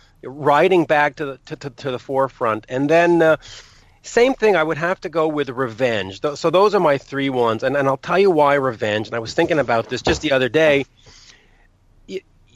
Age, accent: 40-59, American